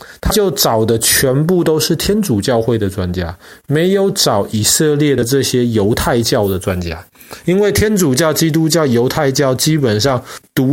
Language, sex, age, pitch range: Chinese, male, 30-49, 115-160 Hz